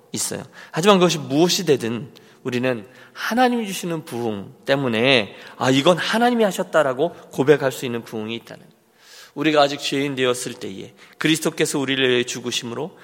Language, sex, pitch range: Korean, male, 125-170 Hz